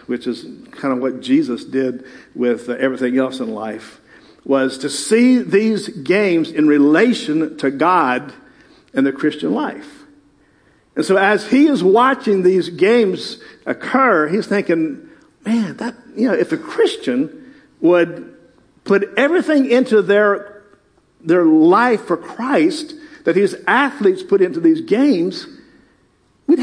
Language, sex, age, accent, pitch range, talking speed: English, male, 50-69, American, 180-280 Hz, 135 wpm